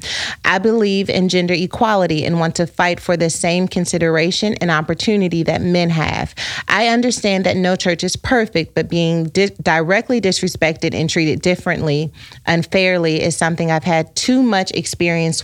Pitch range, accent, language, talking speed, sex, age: 165-195 Hz, American, English, 160 wpm, female, 30-49